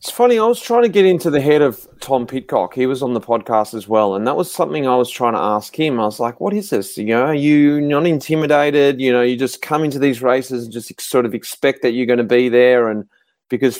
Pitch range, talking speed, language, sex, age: 110-145 Hz, 275 wpm, English, male, 30-49